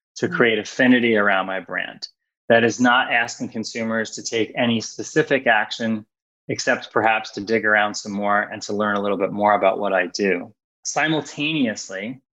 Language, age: English, 20-39